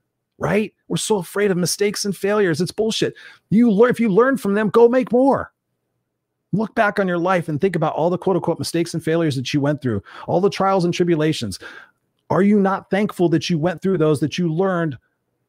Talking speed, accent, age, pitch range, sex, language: 215 wpm, American, 30-49, 130-170 Hz, male, English